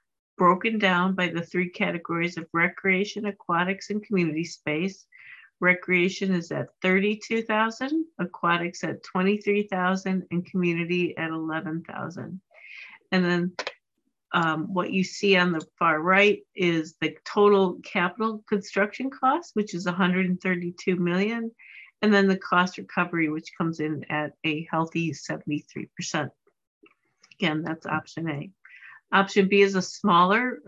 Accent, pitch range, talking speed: American, 165-200 Hz, 125 wpm